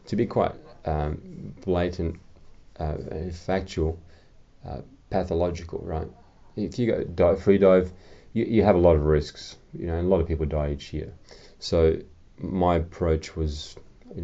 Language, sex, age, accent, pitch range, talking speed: English, male, 30-49, Australian, 80-90 Hz, 165 wpm